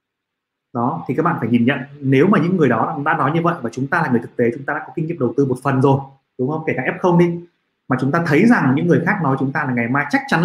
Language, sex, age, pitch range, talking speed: Vietnamese, male, 20-39, 125-160 Hz, 320 wpm